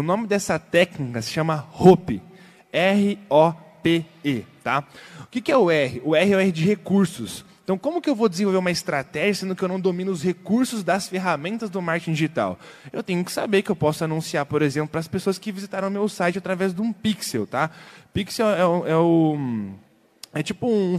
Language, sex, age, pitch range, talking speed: Portuguese, male, 20-39, 155-200 Hz, 205 wpm